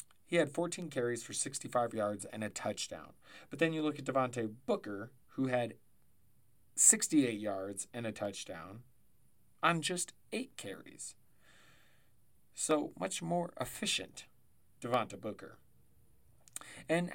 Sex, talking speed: male, 125 wpm